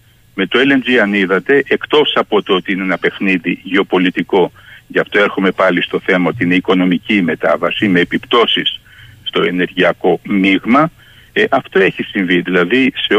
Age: 60-79